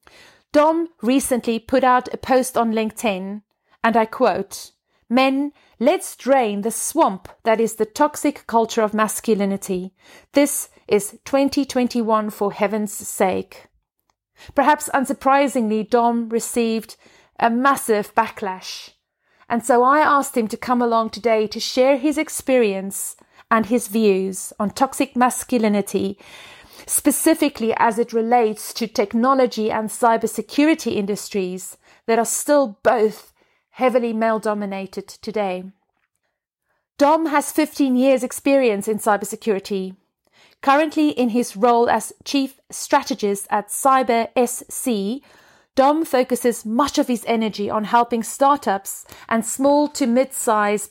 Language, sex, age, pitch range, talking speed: English, female, 30-49, 215-270 Hz, 120 wpm